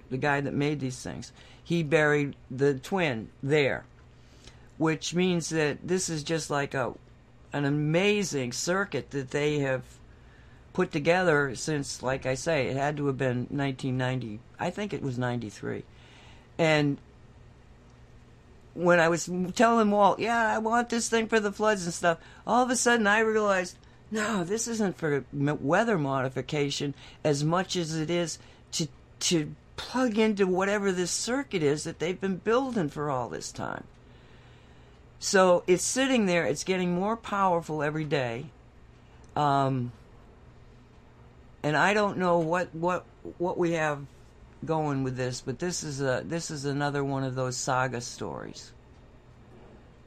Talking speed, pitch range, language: 150 wpm, 140-180 Hz, English